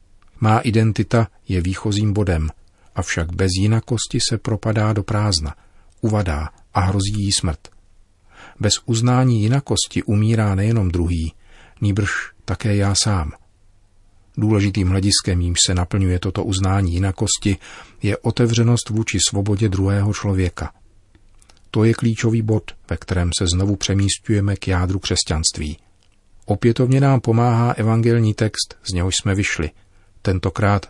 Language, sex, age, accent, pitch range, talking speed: Czech, male, 40-59, native, 95-110 Hz, 120 wpm